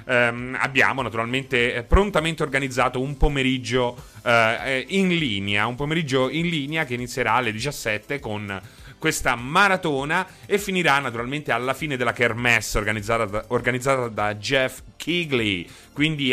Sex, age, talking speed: male, 30-49, 130 wpm